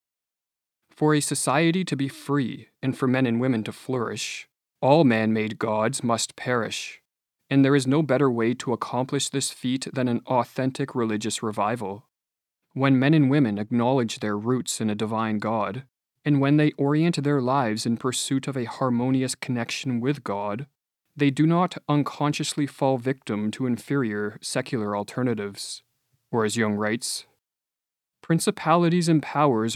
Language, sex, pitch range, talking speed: English, male, 115-145 Hz, 150 wpm